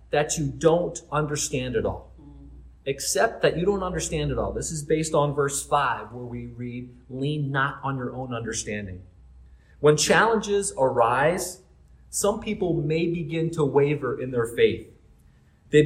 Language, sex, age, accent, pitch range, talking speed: English, male, 30-49, American, 120-160 Hz, 155 wpm